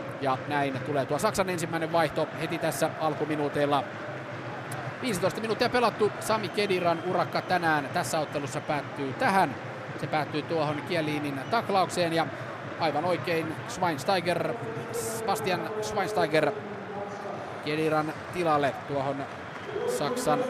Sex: male